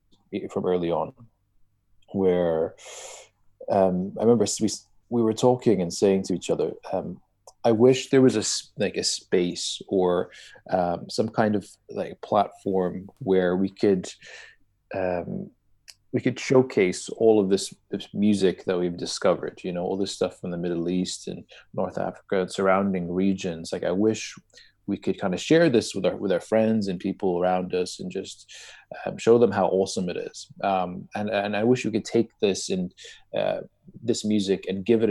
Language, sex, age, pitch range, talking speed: English, male, 30-49, 95-115 Hz, 180 wpm